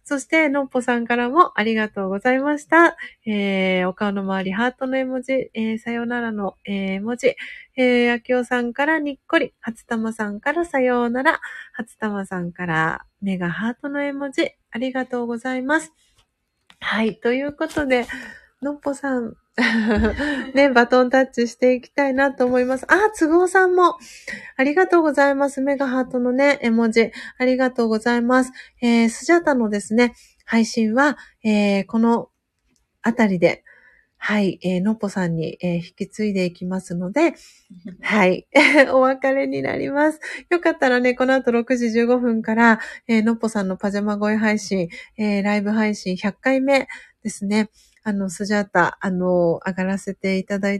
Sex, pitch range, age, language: female, 200-265 Hz, 30-49, Japanese